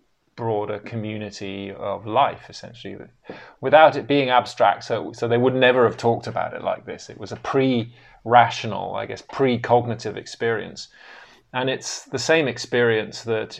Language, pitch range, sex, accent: Dutch, 105-125 Hz, male, British